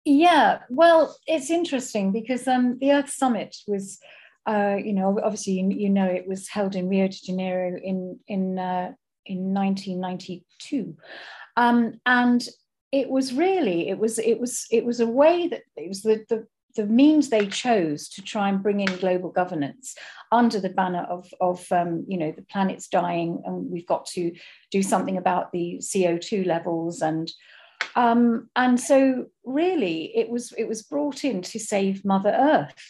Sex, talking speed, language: female, 170 wpm, English